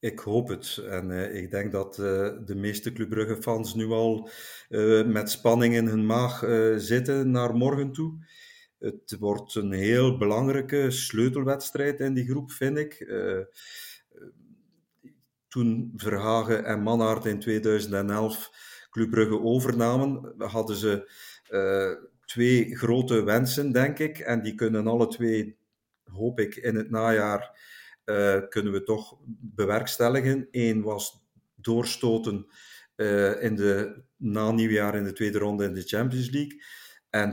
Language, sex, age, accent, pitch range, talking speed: Dutch, male, 50-69, Belgian, 105-130 Hz, 135 wpm